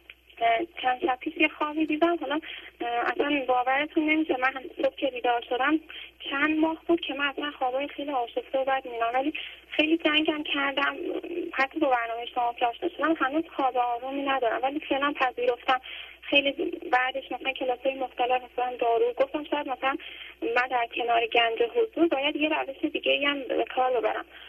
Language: Persian